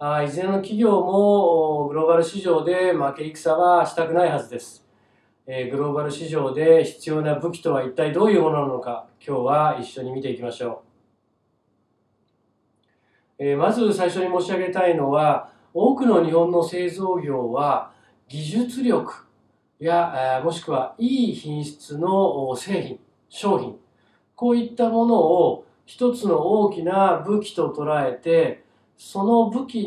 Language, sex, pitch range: Japanese, male, 145-195 Hz